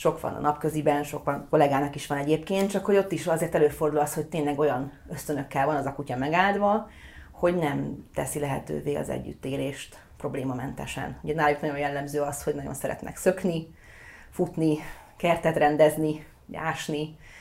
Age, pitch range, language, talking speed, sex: 30-49, 140-175 Hz, Hungarian, 155 wpm, female